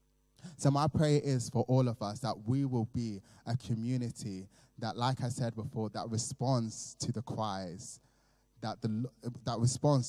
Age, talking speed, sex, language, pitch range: 20-39, 165 wpm, male, English, 110-135 Hz